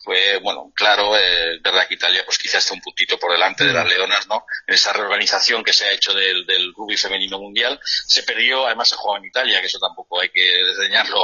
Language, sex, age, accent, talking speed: Spanish, male, 40-59, Spanish, 230 wpm